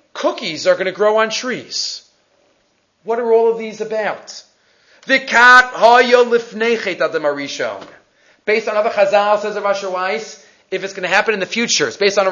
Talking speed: 150 wpm